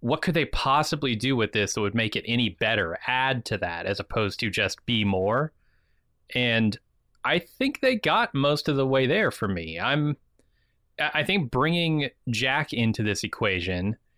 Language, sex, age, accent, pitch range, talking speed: English, male, 30-49, American, 100-130 Hz, 180 wpm